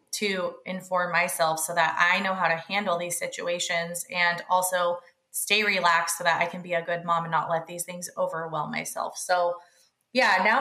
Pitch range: 170-195 Hz